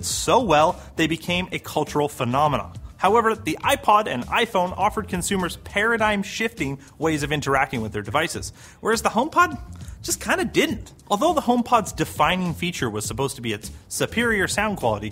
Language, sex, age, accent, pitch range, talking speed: English, male, 30-49, American, 120-205 Hz, 165 wpm